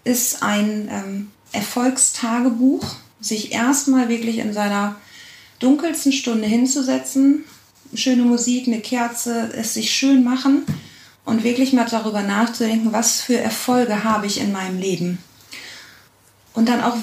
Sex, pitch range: female, 225-270 Hz